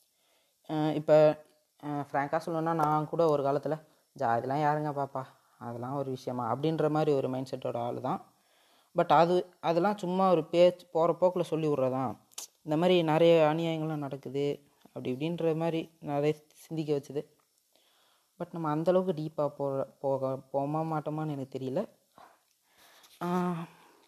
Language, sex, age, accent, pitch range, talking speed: Tamil, female, 30-49, native, 140-165 Hz, 125 wpm